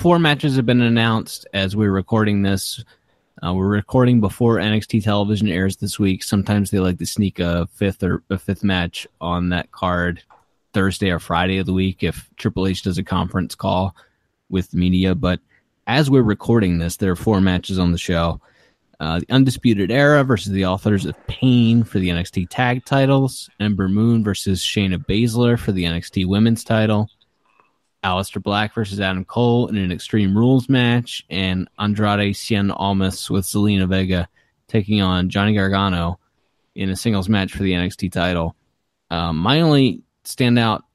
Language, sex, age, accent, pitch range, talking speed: English, male, 20-39, American, 90-115 Hz, 170 wpm